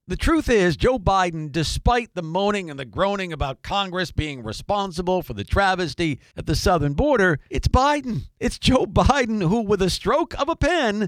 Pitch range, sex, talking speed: 160-235 Hz, male, 185 wpm